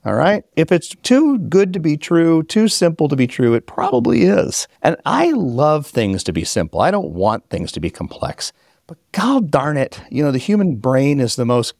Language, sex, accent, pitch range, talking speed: English, male, American, 105-155 Hz, 220 wpm